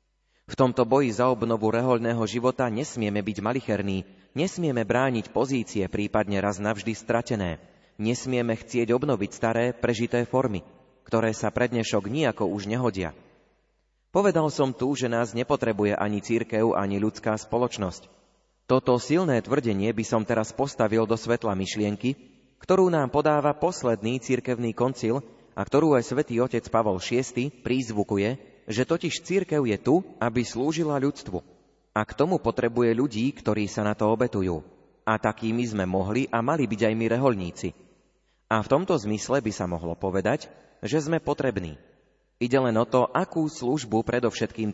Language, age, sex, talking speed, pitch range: Slovak, 30-49, male, 150 wpm, 105-130 Hz